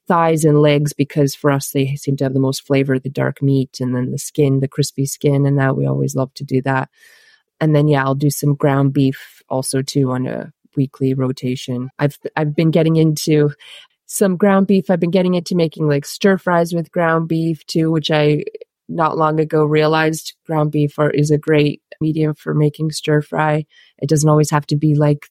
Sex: female